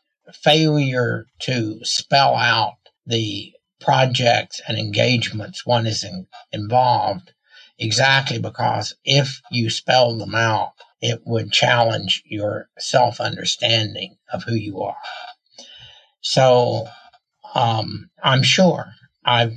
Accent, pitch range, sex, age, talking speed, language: American, 110-130 Hz, male, 60-79, 100 wpm, English